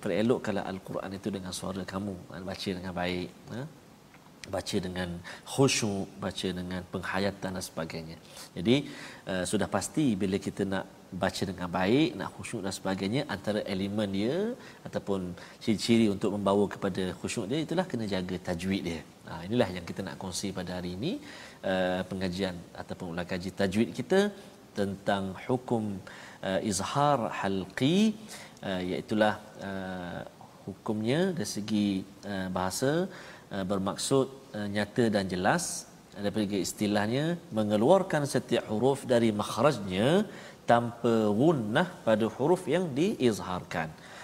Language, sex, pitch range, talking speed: Malayalam, male, 95-120 Hz, 125 wpm